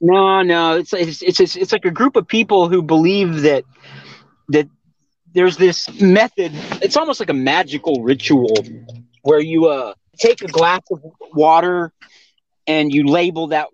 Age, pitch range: 30-49, 130-175 Hz